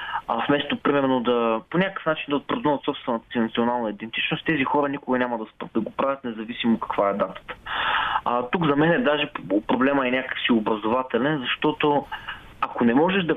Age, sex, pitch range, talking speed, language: 20-39, male, 125-175 Hz, 185 wpm, Bulgarian